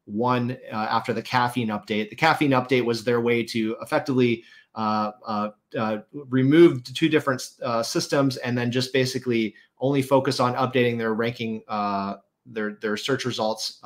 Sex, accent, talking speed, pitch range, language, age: male, American, 160 wpm, 110-135 Hz, English, 30-49